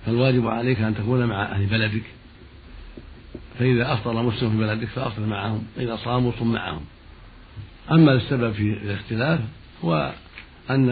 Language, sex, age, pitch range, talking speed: Arabic, male, 60-79, 105-125 Hz, 130 wpm